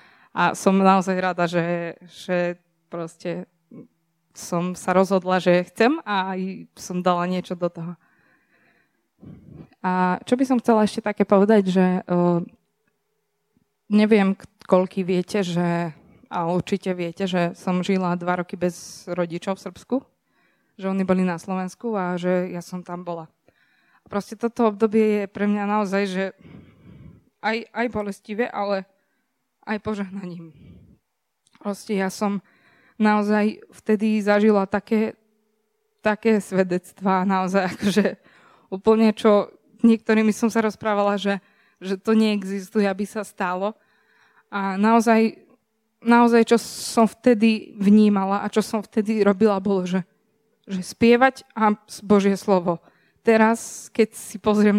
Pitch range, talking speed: 185-215 Hz, 130 wpm